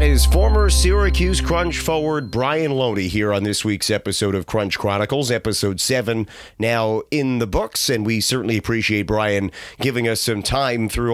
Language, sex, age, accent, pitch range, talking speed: English, male, 30-49, American, 105-135 Hz, 165 wpm